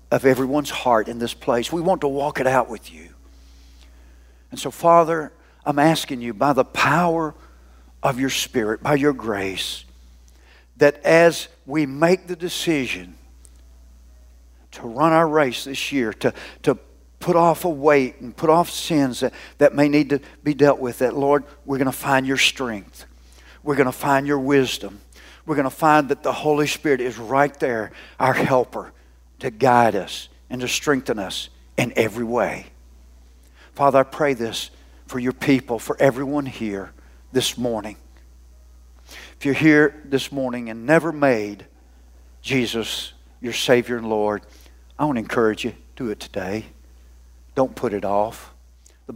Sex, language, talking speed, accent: male, English, 165 wpm, American